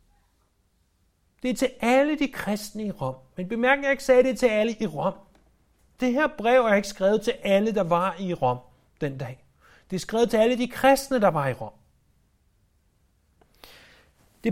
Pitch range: 135-230 Hz